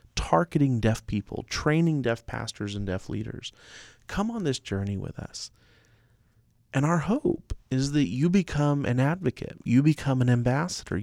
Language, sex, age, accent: English, male, 30-49, American